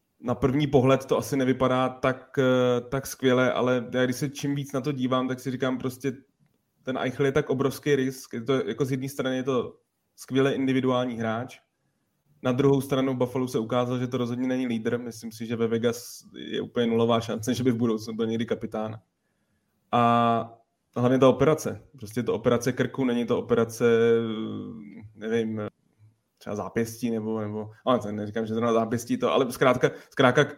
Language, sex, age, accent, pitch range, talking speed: Czech, male, 20-39, native, 120-130 Hz, 175 wpm